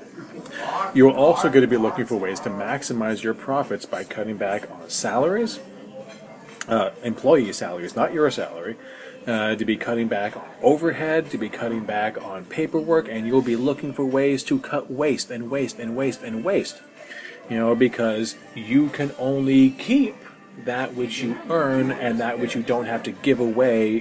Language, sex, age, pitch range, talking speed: English, male, 30-49, 110-135 Hz, 180 wpm